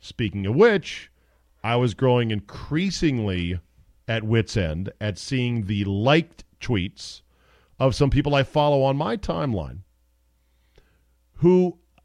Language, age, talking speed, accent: English, 40-59, 120 wpm, American